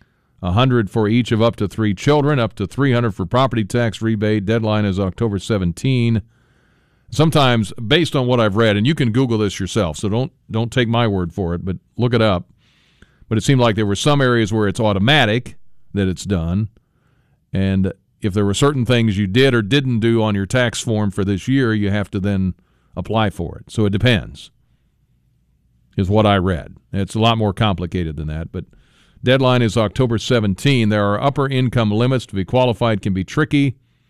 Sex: male